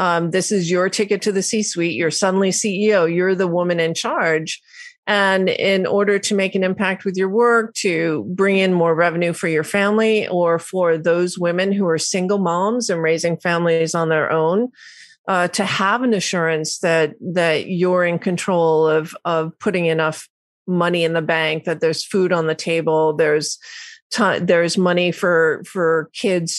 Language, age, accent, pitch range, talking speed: English, 40-59, American, 165-195 Hz, 175 wpm